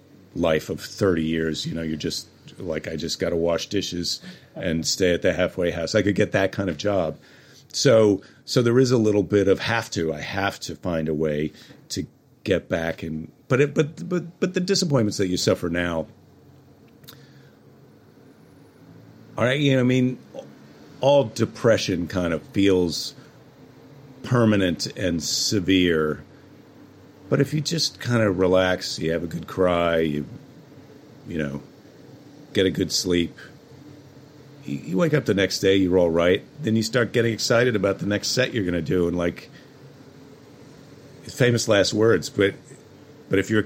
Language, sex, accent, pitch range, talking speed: English, male, American, 90-135 Hz, 170 wpm